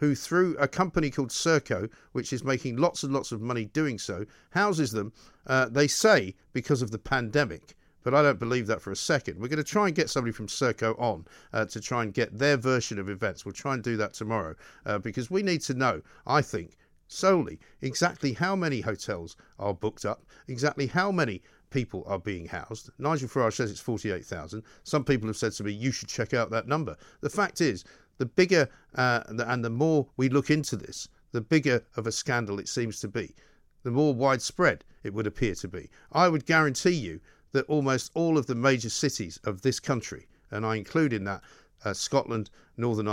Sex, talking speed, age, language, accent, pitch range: male, 210 wpm, 50-69, English, British, 105-140 Hz